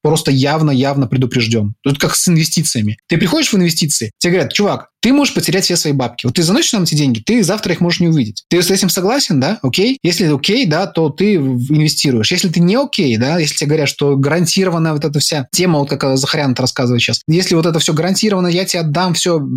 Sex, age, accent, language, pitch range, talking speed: male, 20-39, native, Russian, 140-180 Hz, 230 wpm